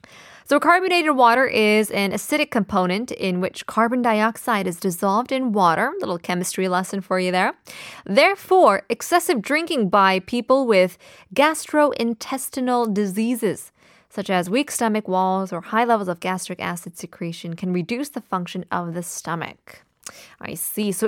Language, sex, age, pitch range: Korean, female, 20-39, 185-245 Hz